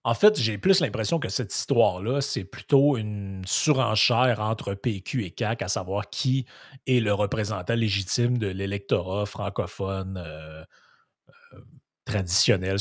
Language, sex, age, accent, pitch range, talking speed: French, male, 30-49, Canadian, 95-125 Hz, 135 wpm